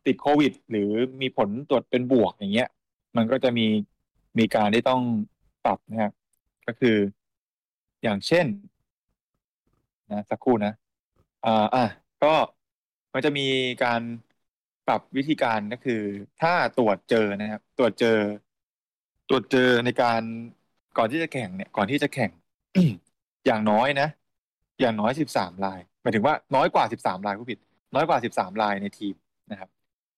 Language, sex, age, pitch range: English, male, 20-39, 105-135 Hz